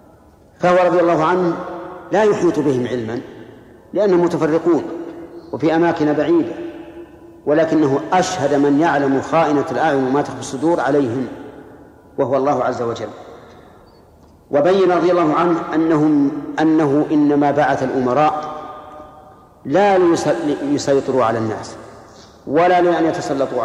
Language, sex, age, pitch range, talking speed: Arabic, male, 50-69, 140-170 Hz, 105 wpm